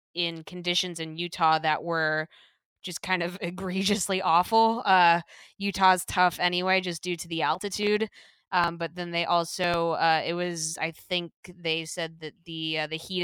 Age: 20-39